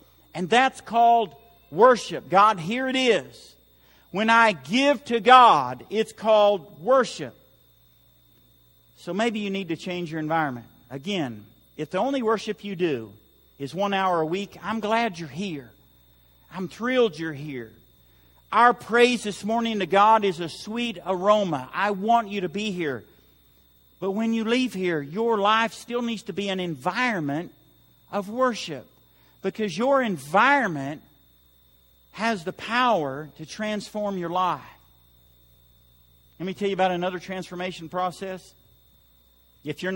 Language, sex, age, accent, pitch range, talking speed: English, male, 50-69, American, 140-205 Hz, 145 wpm